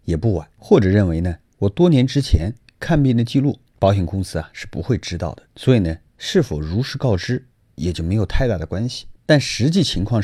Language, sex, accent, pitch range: Chinese, male, native, 95-135 Hz